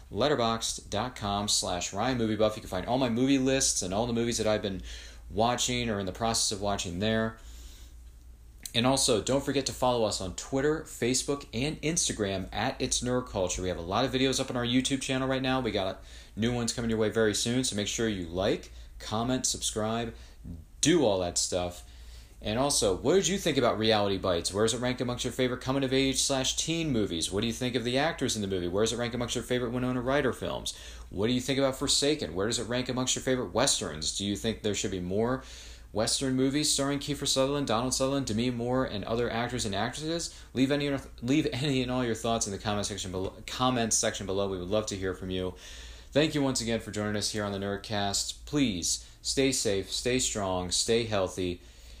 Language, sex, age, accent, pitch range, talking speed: English, male, 40-59, American, 95-130 Hz, 220 wpm